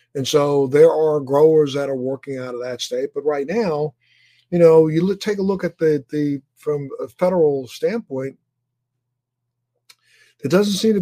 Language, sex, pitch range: English, male, 135-160 Hz